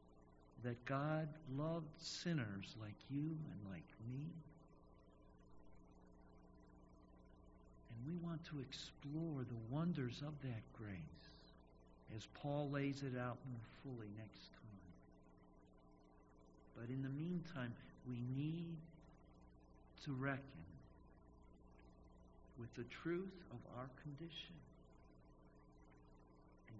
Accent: American